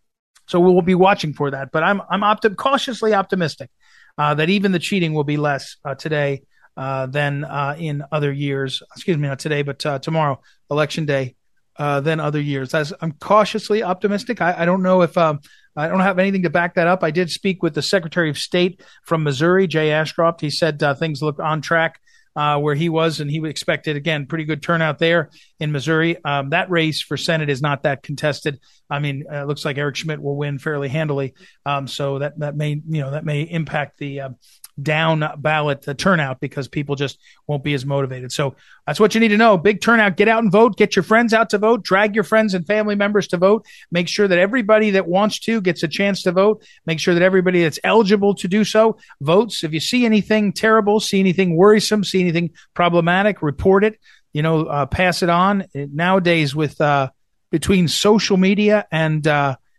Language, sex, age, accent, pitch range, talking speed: English, male, 40-59, American, 145-195 Hz, 215 wpm